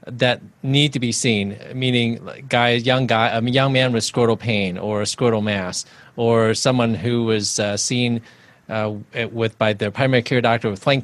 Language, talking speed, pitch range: English, 185 wpm, 110-135 Hz